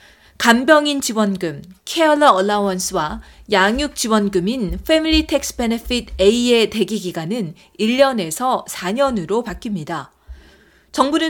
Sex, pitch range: female, 185-265 Hz